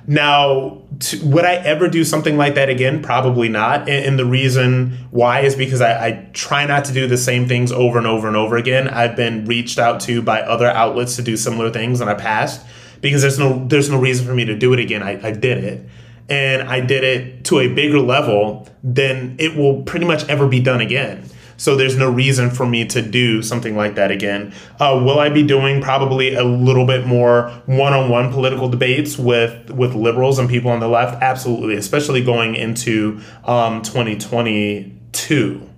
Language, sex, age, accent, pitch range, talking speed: English, male, 20-39, American, 115-135 Hz, 205 wpm